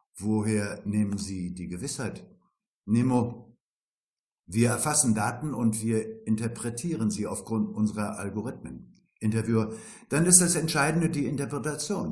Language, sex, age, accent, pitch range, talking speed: German, male, 60-79, German, 110-145 Hz, 115 wpm